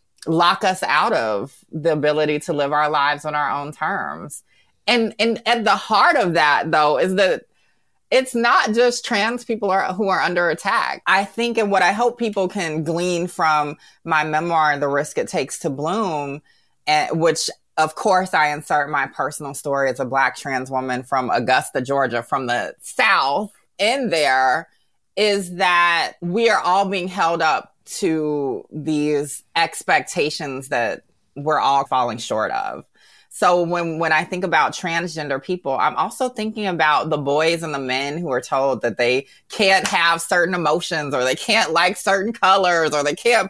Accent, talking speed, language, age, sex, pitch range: American, 175 wpm, English, 20-39, female, 145-190 Hz